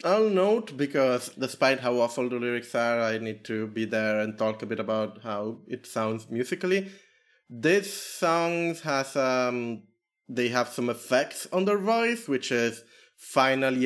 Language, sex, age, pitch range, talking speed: English, male, 30-49, 110-135 Hz, 160 wpm